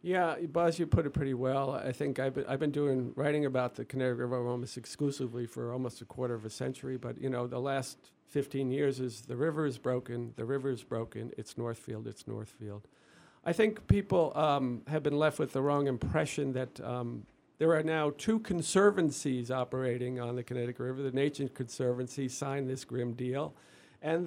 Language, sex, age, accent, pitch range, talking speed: English, male, 50-69, American, 125-155 Hz, 195 wpm